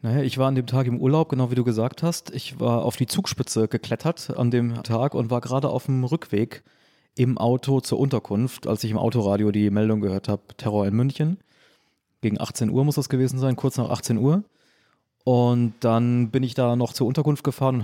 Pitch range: 110-130 Hz